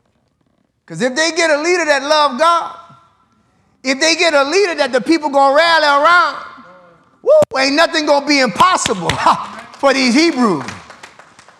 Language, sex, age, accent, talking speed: English, male, 30-49, American, 165 wpm